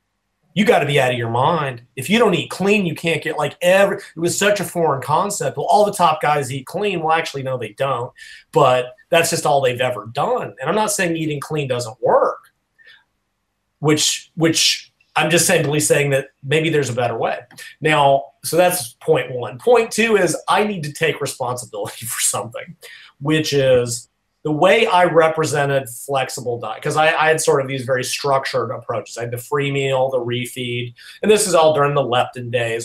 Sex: male